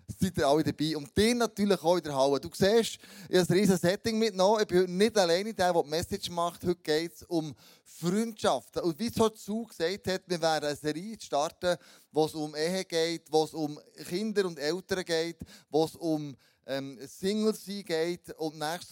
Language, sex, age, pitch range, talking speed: German, male, 20-39, 150-190 Hz, 215 wpm